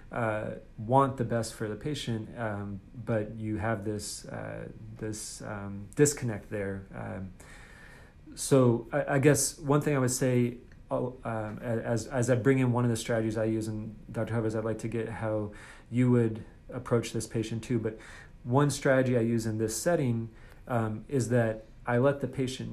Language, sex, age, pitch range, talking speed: English, male, 30-49, 110-125 Hz, 180 wpm